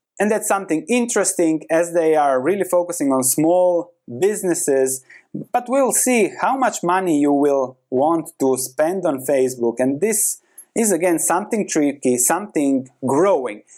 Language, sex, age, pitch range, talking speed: English, male, 30-49, 130-220 Hz, 145 wpm